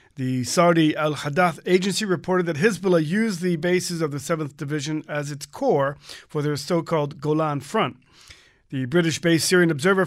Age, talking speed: 40-59, 155 wpm